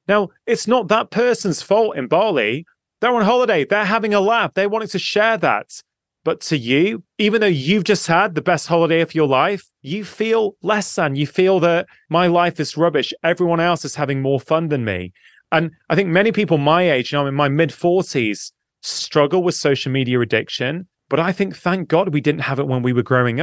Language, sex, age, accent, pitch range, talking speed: English, male, 30-49, British, 140-180 Hz, 215 wpm